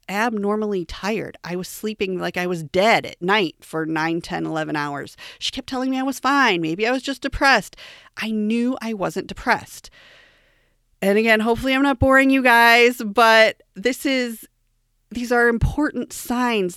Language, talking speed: English, 170 wpm